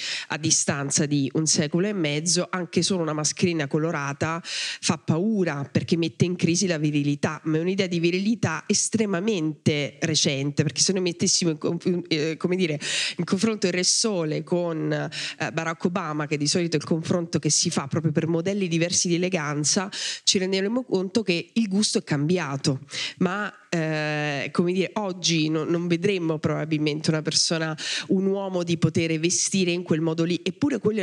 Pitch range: 155-190 Hz